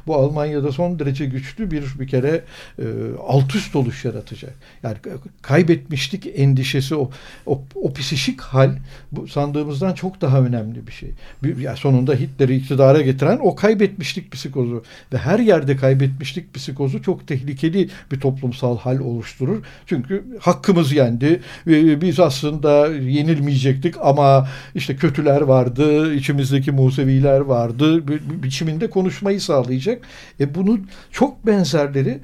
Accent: native